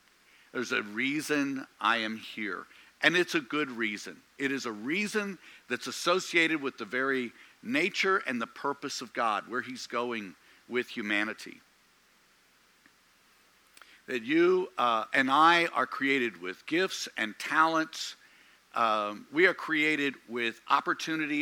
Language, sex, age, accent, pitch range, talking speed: English, male, 60-79, American, 120-170 Hz, 135 wpm